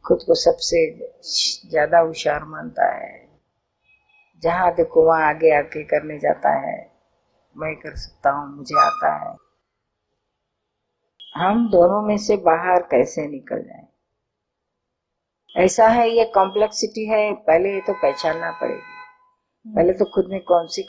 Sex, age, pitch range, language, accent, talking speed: female, 50-69, 165-210 Hz, Hindi, native, 130 wpm